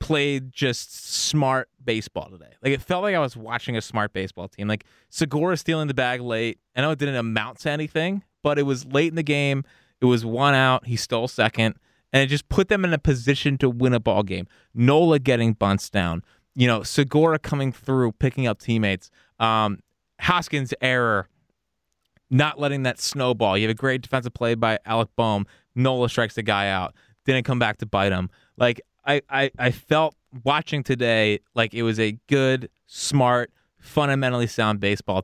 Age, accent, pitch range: 20-39, American, 110-135 Hz